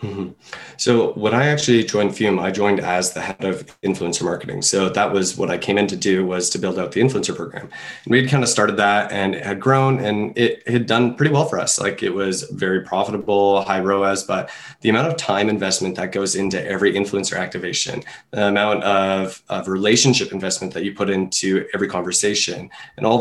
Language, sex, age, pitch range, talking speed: English, male, 20-39, 95-115 Hz, 210 wpm